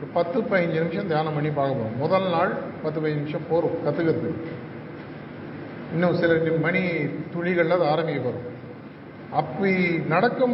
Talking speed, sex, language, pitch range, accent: 125 wpm, male, Tamil, 150-180 Hz, native